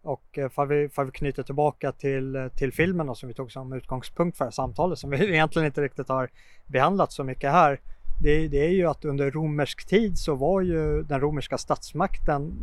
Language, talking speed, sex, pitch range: Swedish, 200 wpm, male, 125-150 Hz